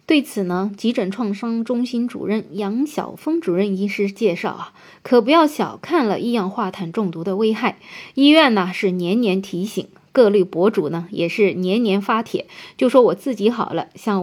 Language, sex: Chinese, female